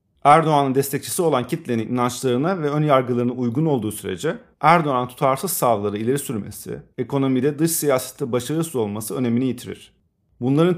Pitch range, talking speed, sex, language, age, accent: 120-155 Hz, 130 wpm, male, English, 40-59, Turkish